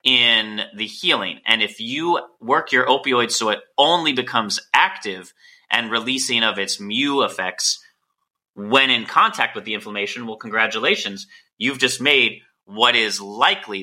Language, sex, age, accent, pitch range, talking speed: English, male, 30-49, American, 110-155 Hz, 150 wpm